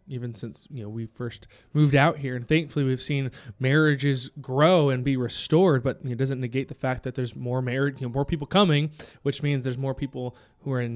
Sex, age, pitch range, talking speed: male, 20-39, 125-155 Hz, 225 wpm